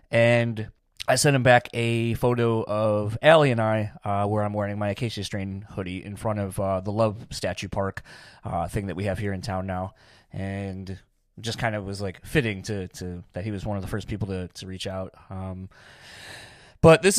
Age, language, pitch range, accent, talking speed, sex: 20-39, English, 105-130 Hz, American, 210 wpm, male